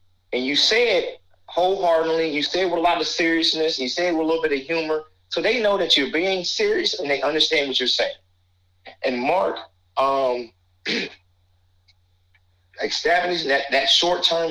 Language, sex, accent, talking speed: English, male, American, 175 wpm